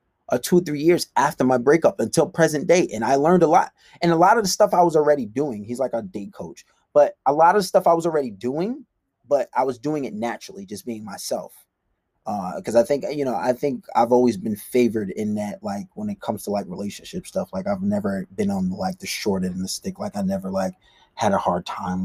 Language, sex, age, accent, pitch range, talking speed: English, male, 20-39, American, 110-160 Hz, 250 wpm